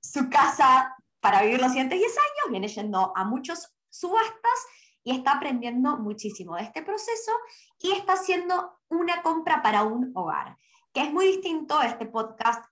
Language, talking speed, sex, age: Spanish, 160 wpm, male, 20-39